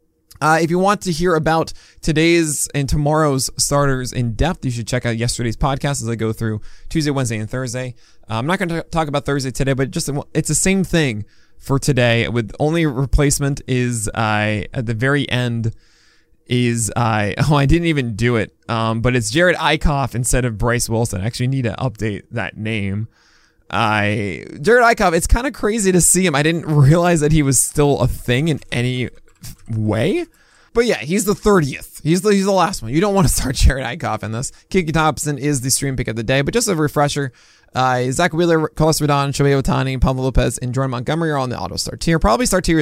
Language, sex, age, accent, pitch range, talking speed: English, male, 20-39, American, 120-160 Hz, 220 wpm